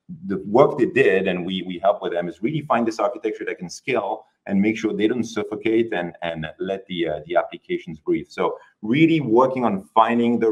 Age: 30-49